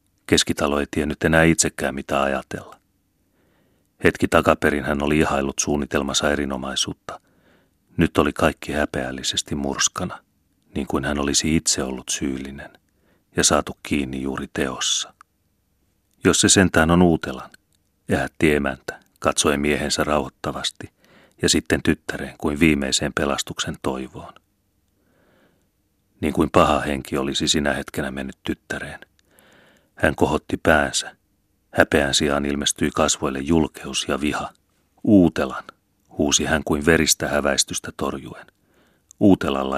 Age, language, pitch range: 30-49, Finnish, 70-85 Hz